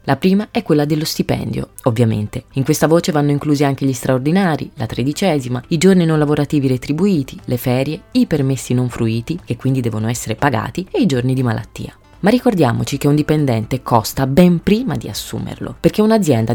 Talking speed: 180 wpm